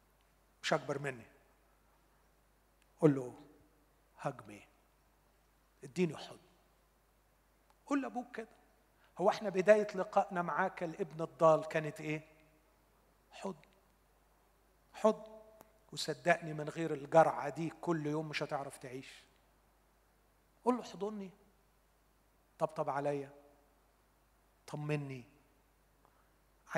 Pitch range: 140-200 Hz